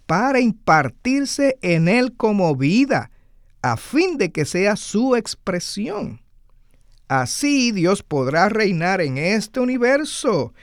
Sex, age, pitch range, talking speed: male, 50-69, 145-245 Hz, 115 wpm